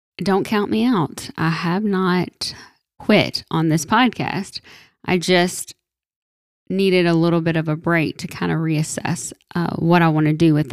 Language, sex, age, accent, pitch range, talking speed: English, female, 10-29, American, 170-220 Hz, 175 wpm